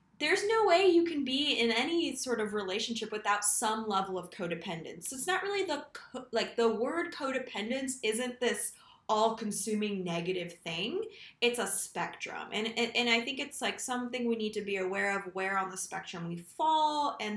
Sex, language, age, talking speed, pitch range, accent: female, English, 10-29, 190 wpm, 195-250 Hz, American